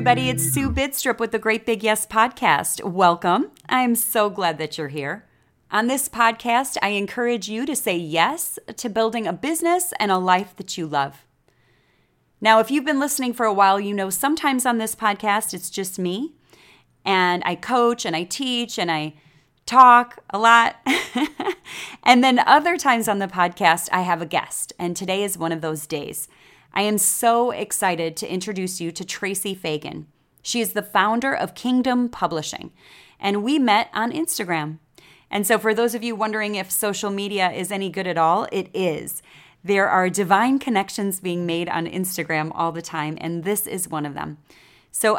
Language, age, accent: English, 30-49, American